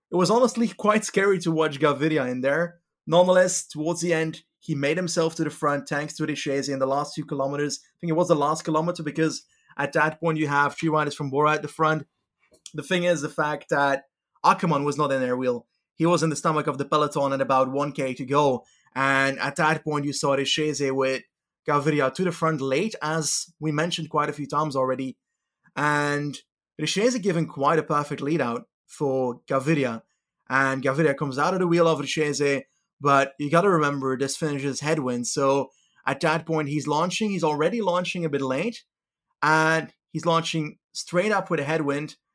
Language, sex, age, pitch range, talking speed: English, male, 30-49, 140-170 Hz, 200 wpm